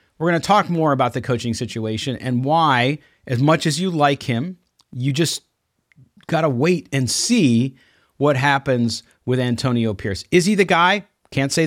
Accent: American